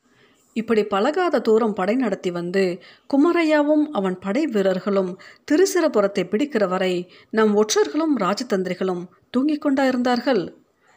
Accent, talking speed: native, 100 wpm